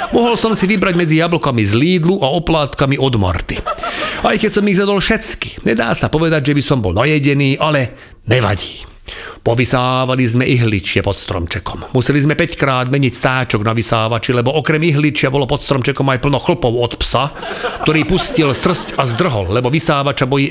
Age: 40-59